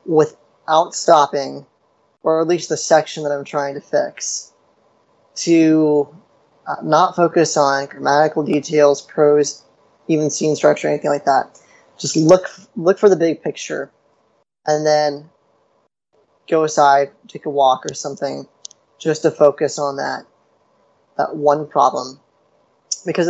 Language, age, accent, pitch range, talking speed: English, 20-39, American, 145-160 Hz, 130 wpm